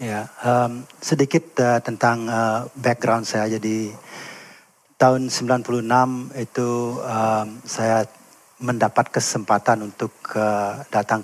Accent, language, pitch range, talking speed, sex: Indonesian, English, 115-140 Hz, 100 wpm, male